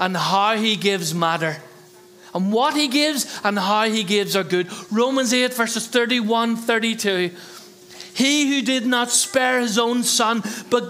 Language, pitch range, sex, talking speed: English, 190-245 Hz, male, 160 wpm